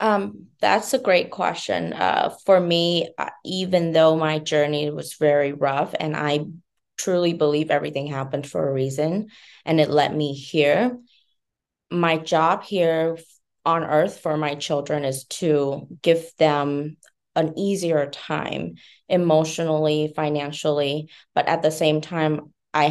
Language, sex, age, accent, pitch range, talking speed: English, female, 20-39, American, 150-180 Hz, 135 wpm